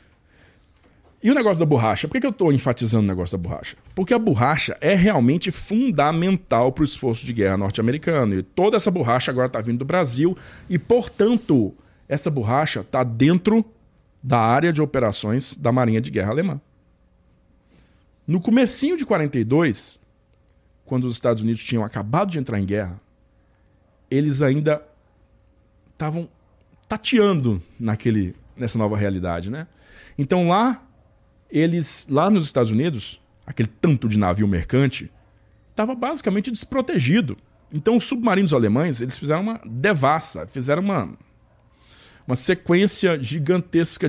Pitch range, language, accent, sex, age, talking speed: 105-160 Hz, Portuguese, Brazilian, male, 40-59, 135 wpm